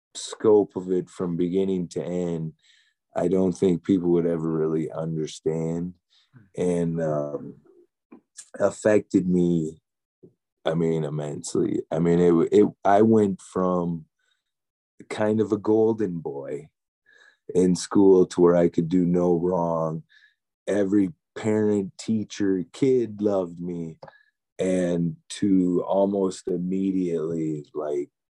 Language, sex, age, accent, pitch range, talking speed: English, male, 30-49, American, 85-120 Hz, 115 wpm